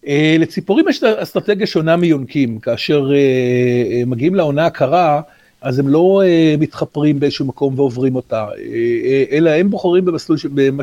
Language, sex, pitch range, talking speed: Hebrew, male, 140-200 Hz, 125 wpm